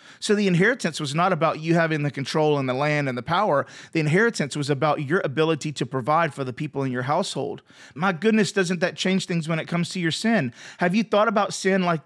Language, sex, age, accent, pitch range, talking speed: English, male, 30-49, American, 150-195 Hz, 240 wpm